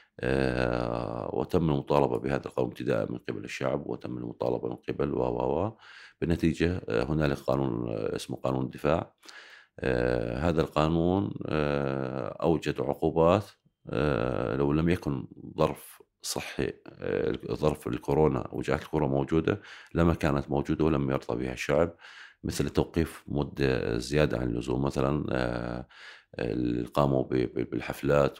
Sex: male